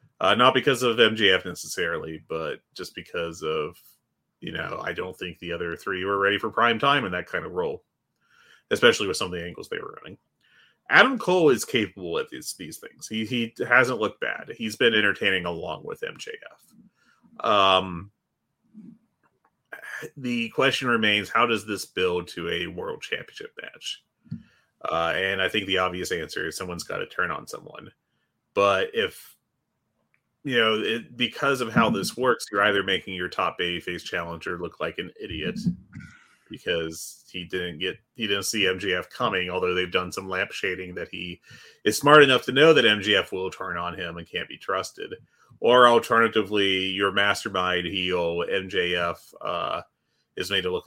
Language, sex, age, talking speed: English, male, 30-49, 175 wpm